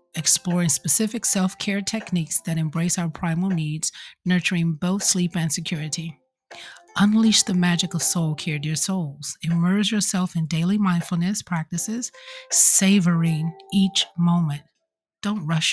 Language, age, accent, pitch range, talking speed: English, 40-59, American, 165-200 Hz, 130 wpm